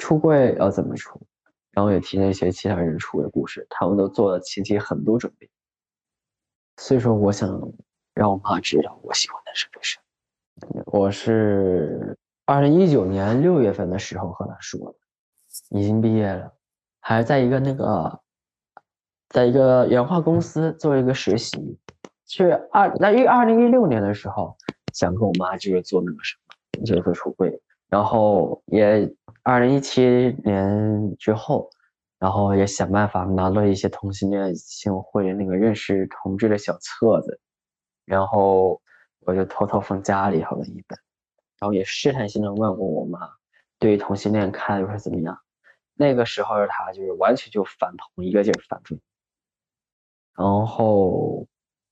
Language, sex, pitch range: Chinese, male, 95-115 Hz